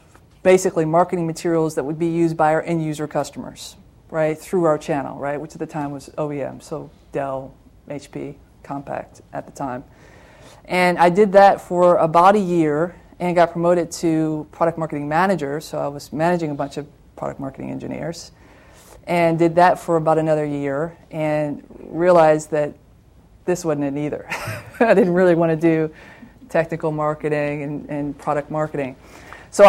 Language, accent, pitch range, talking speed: English, American, 150-185 Hz, 165 wpm